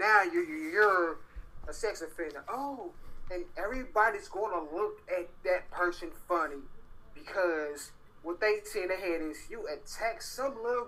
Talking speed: 150 wpm